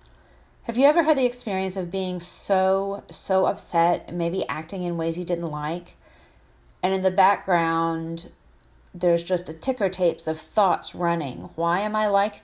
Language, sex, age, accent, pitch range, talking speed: English, female, 30-49, American, 165-200 Hz, 165 wpm